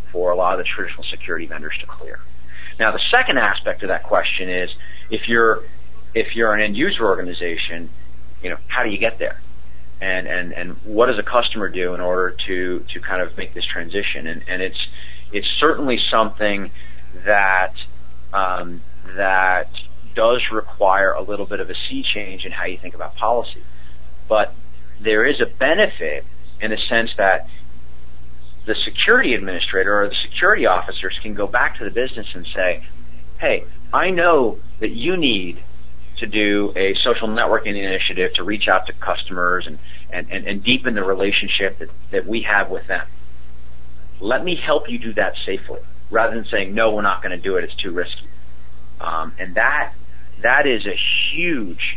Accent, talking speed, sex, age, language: American, 180 wpm, male, 30-49, English